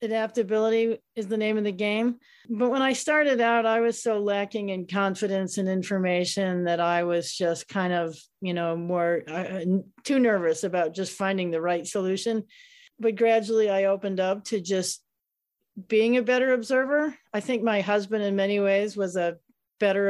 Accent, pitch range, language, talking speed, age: American, 180-225 Hz, English, 175 wpm, 50-69